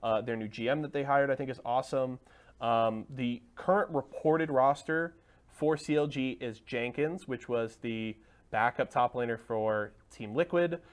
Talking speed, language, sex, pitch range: 160 wpm, English, male, 115-155 Hz